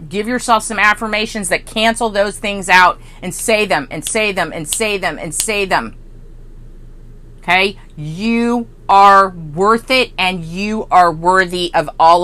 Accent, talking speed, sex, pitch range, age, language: American, 155 wpm, female, 165-225 Hz, 40-59, English